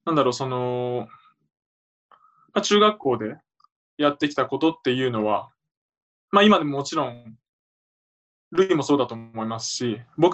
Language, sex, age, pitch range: Japanese, male, 20-39, 120-165 Hz